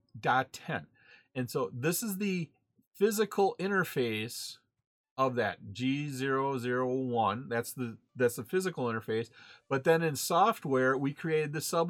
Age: 40-59